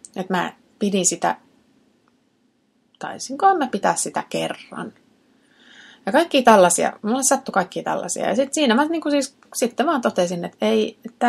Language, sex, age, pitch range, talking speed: Finnish, female, 30-49, 185-260 Hz, 135 wpm